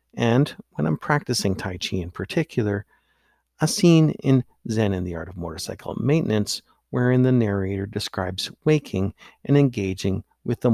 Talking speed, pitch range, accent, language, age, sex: 150 wpm, 90-120 Hz, American, English, 50-69, male